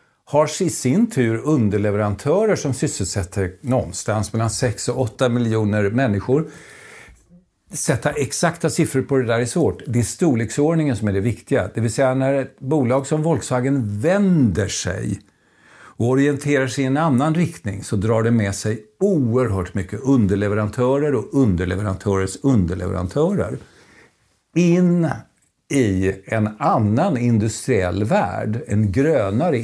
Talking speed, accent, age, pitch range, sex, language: 130 wpm, native, 50-69, 105-145 Hz, male, Swedish